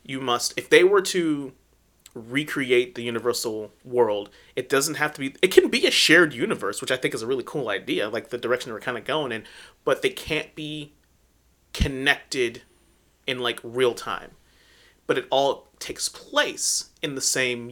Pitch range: 120-170 Hz